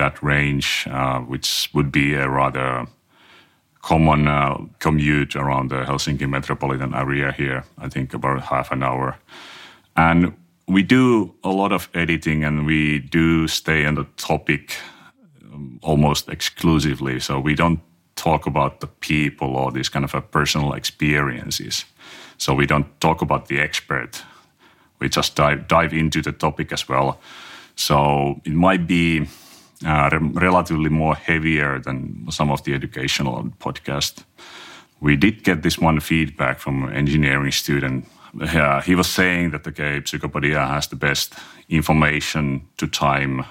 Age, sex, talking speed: 30-49, male, 145 wpm